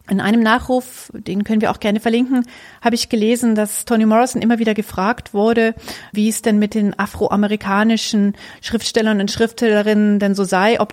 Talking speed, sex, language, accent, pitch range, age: 175 wpm, female, German, German, 195-225 Hz, 40-59